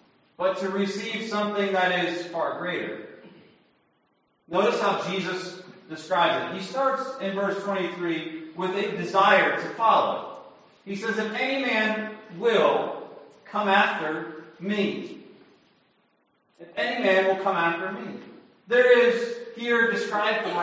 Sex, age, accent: male, 40-59, American